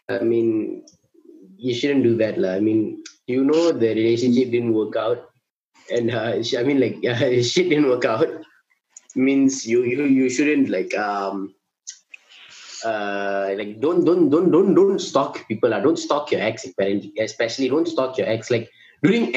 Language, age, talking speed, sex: English, 20-39, 165 wpm, male